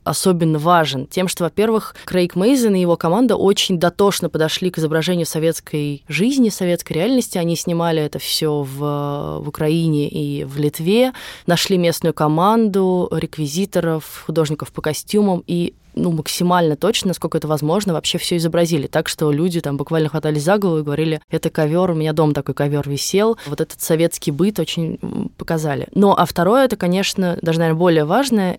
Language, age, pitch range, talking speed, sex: Russian, 20-39, 155-190 Hz, 165 wpm, female